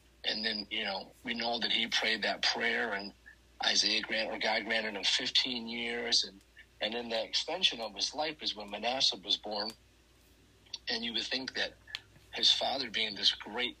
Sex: male